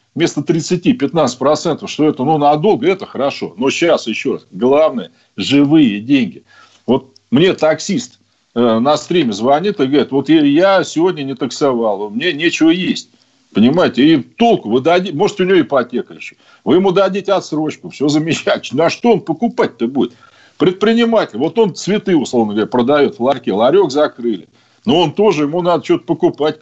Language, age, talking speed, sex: Russian, 50-69, 160 wpm, male